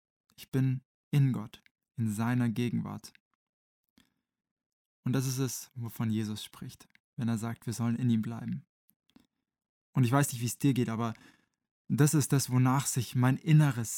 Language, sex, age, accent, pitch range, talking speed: German, male, 20-39, German, 115-130 Hz, 165 wpm